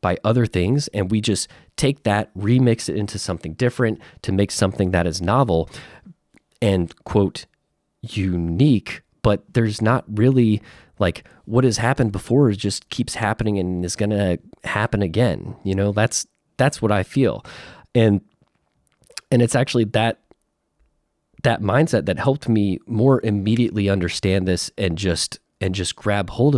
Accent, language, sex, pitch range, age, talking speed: American, English, male, 95-120 Hz, 30-49, 155 wpm